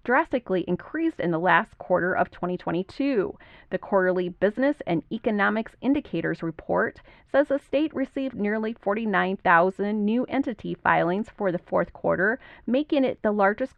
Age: 30-49